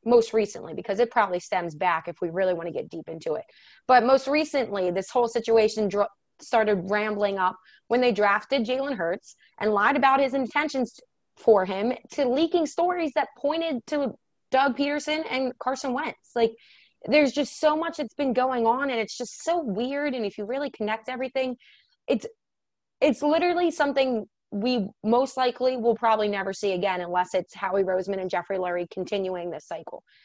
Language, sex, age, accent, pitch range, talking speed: English, female, 20-39, American, 205-275 Hz, 180 wpm